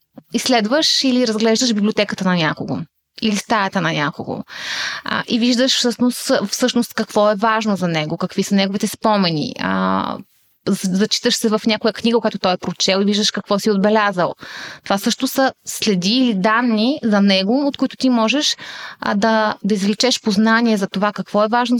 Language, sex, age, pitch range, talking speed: Bulgarian, female, 20-39, 195-240 Hz, 160 wpm